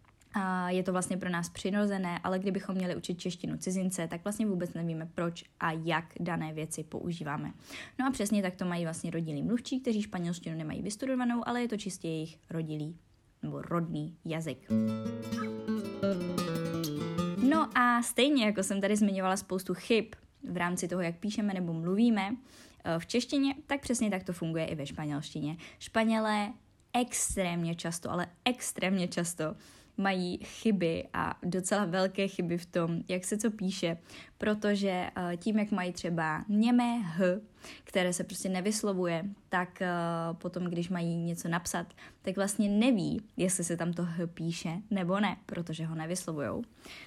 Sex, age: female, 20-39